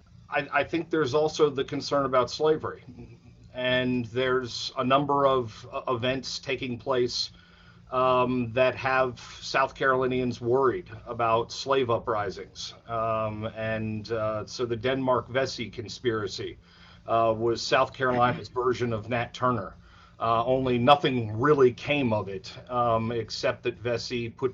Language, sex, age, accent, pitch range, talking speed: English, male, 40-59, American, 110-130 Hz, 130 wpm